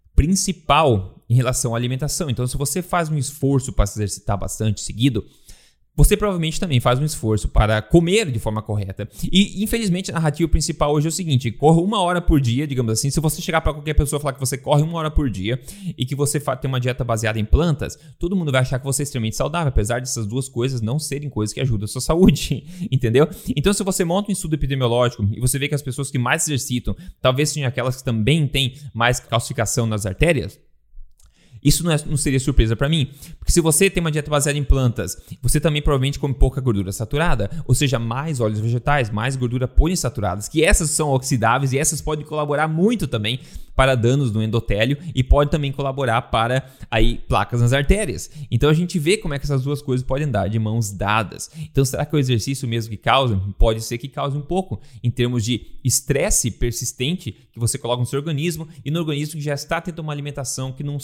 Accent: Brazilian